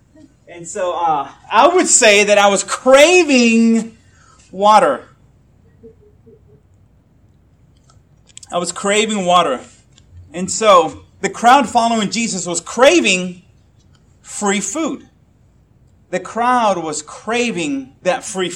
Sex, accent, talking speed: male, American, 100 wpm